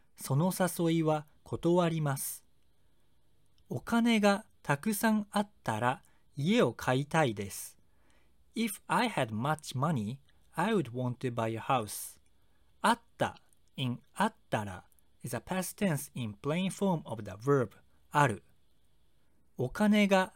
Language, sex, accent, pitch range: Japanese, male, native, 115-185 Hz